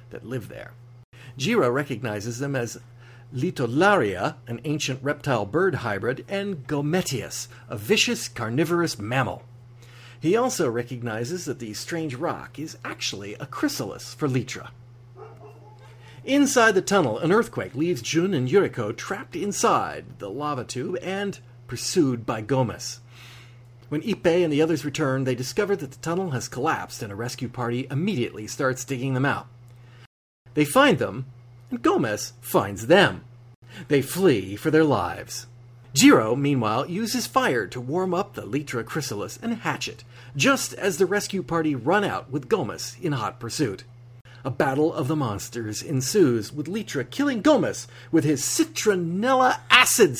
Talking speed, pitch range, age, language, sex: 145 wpm, 120-160 Hz, 40-59, English, male